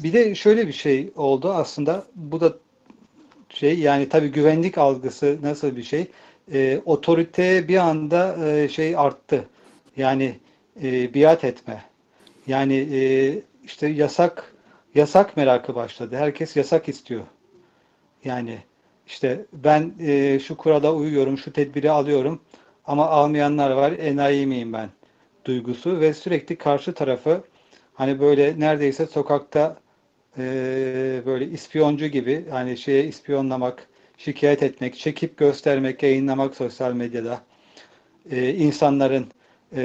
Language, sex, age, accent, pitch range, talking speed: Turkish, male, 40-59, native, 130-155 Hz, 115 wpm